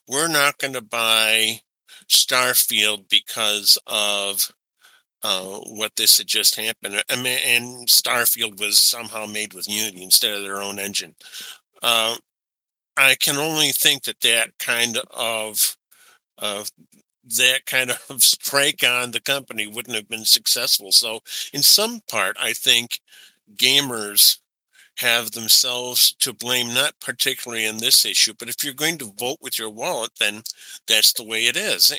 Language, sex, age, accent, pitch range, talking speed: English, male, 50-69, American, 110-130 Hz, 145 wpm